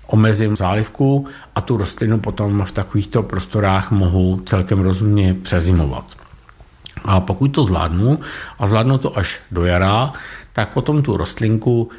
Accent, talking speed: native, 135 wpm